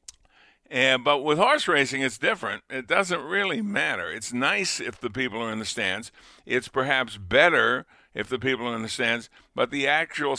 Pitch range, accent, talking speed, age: 120-145 Hz, American, 190 wpm, 50-69